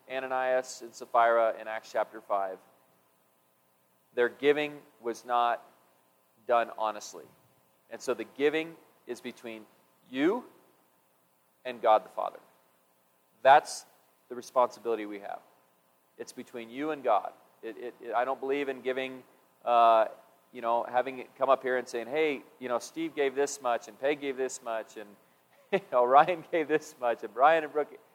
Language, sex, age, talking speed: English, male, 40-59, 160 wpm